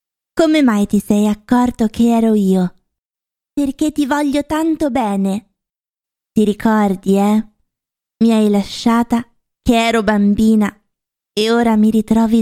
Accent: native